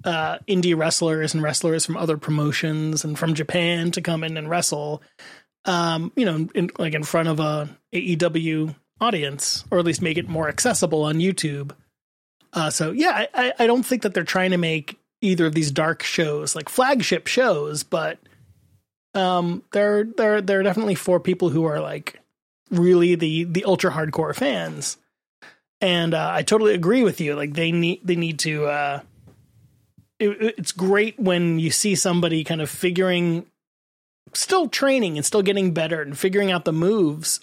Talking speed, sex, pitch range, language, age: 170 wpm, male, 155-185 Hz, English, 30-49